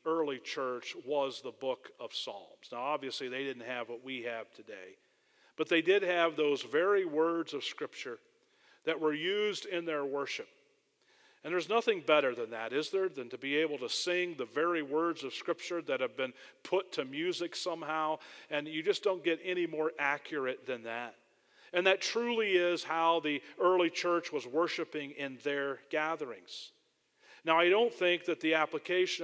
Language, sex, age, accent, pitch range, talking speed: English, male, 40-59, American, 155-195 Hz, 180 wpm